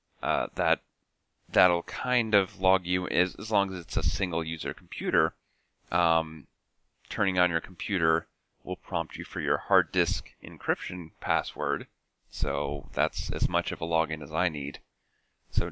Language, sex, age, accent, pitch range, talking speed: English, male, 30-49, American, 80-100 Hz, 155 wpm